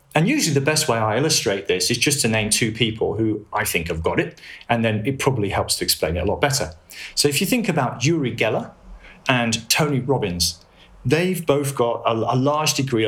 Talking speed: 220 wpm